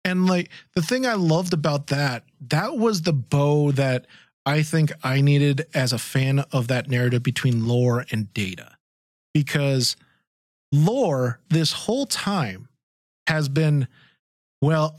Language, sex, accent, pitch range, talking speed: English, male, American, 130-165 Hz, 140 wpm